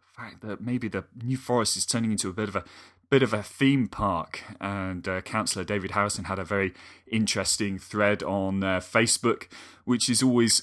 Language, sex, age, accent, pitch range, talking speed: English, male, 30-49, British, 95-120 Hz, 190 wpm